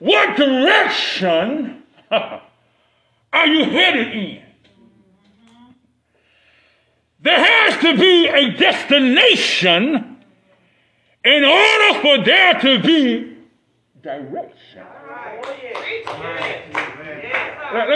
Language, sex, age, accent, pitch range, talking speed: English, male, 50-69, American, 265-345 Hz, 65 wpm